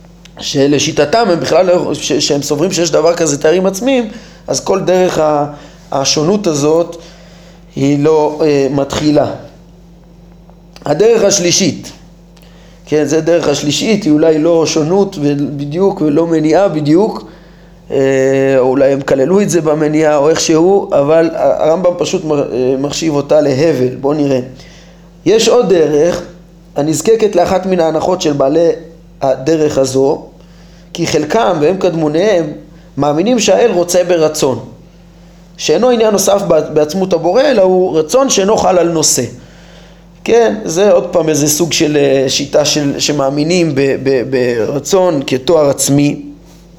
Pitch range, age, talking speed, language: 145-175 Hz, 20-39, 120 wpm, Hebrew